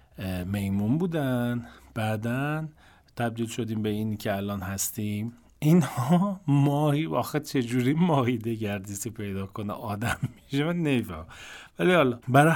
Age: 40-59